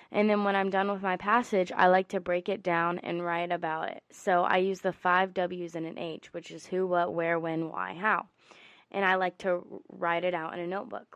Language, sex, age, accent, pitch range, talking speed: English, female, 20-39, American, 175-200 Hz, 240 wpm